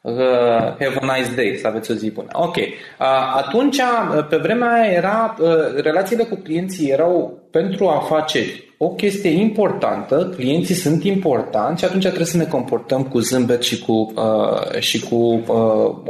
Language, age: Romanian, 20-39